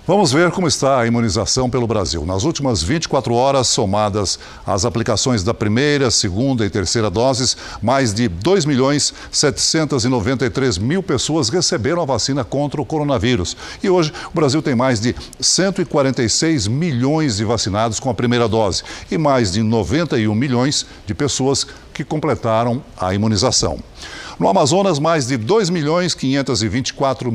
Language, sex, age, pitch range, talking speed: Portuguese, male, 60-79, 115-145 Hz, 140 wpm